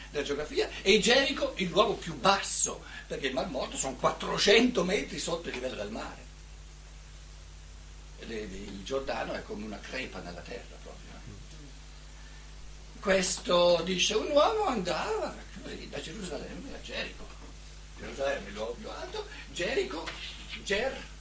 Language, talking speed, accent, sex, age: Italian, 125 wpm, native, male, 60-79